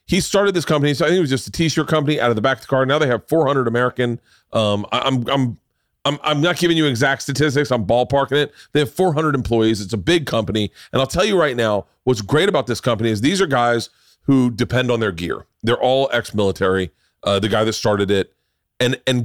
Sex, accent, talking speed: male, American, 240 wpm